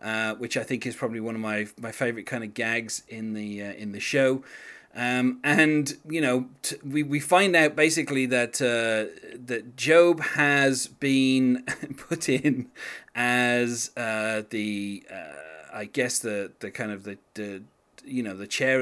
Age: 30-49